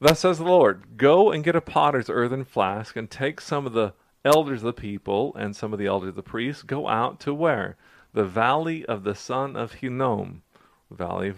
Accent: American